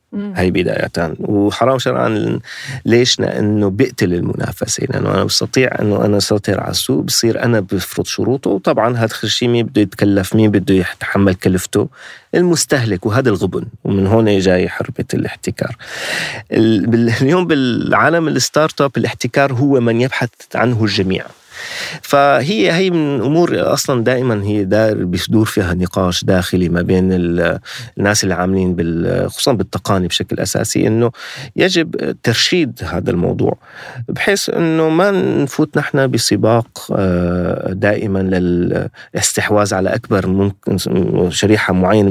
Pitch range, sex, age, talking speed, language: 95-125 Hz, male, 30-49, 125 wpm, Arabic